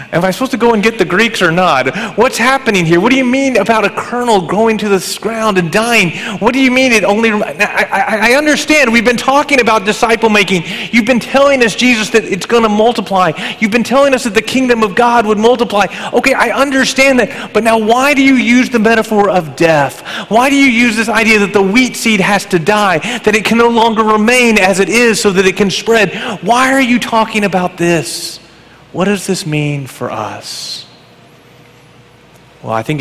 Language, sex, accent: English, male, American